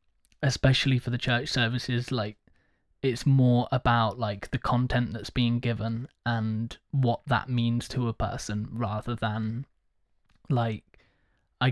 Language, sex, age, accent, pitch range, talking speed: English, male, 10-29, British, 115-130 Hz, 135 wpm